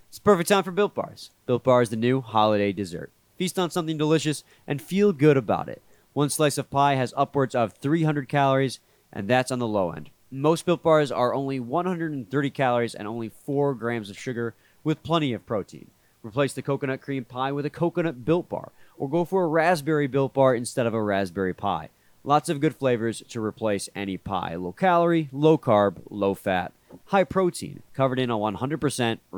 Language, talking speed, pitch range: English, 190 wpm, 115-155 Hz